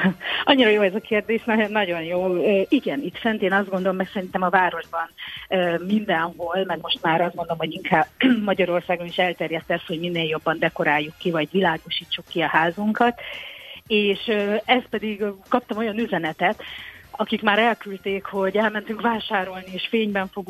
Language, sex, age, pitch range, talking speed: Hungarian, female, 30-49, 170-210 Hz, 155 wpm